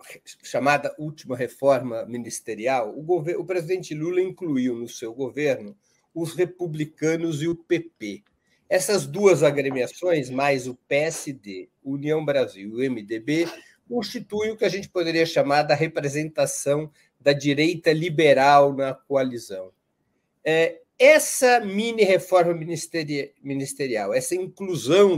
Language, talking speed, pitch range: Portuguese, 115 wpm, 130-175 Hz